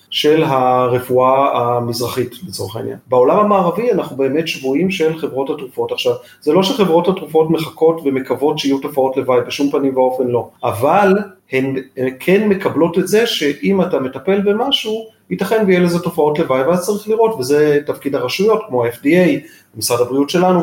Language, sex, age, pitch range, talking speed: Hebrew, male, 40-59, 135-195 Hz, 155 wpm